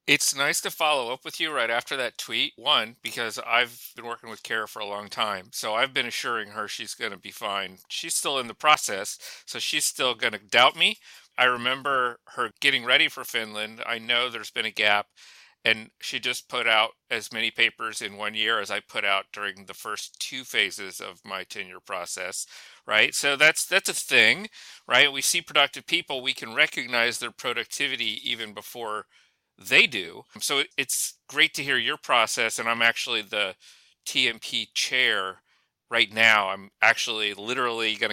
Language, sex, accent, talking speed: English, male, American, 190 wpm